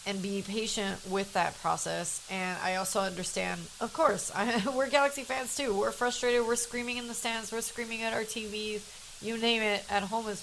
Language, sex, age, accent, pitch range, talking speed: English, female, 30-49, American, 180-215 Hz, 200 wpm